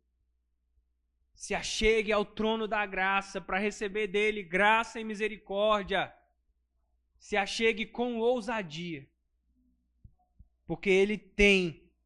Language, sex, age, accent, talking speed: Portuguese, male, 20-39, Brazilian, 95 wpm